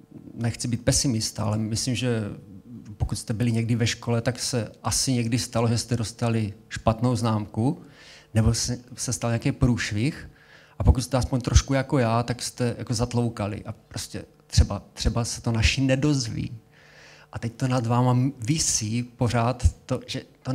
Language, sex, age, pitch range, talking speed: Czech, male, 30-49, 110-125 Hz, 165 wpm